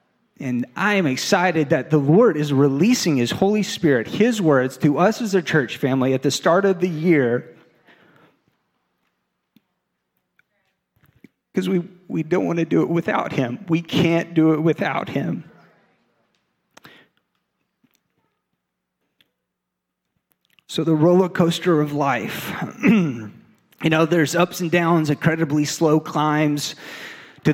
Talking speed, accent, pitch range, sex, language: 125 wpm, American, 145-175 Hz, male, English